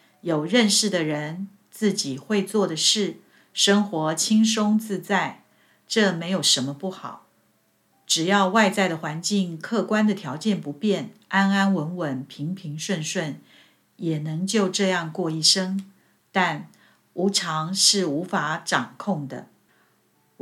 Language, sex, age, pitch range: Chinese, female, 50-69, 155-200 Hz